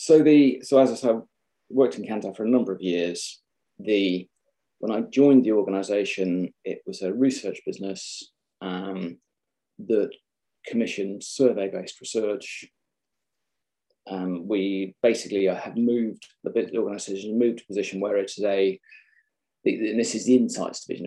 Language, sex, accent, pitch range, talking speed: English, male, British, 95-120 Hz, 150 wpm